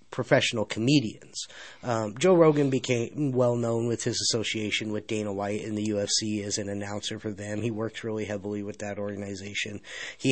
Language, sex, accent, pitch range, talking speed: English, male, American, 105-130 Hz, 175 wpm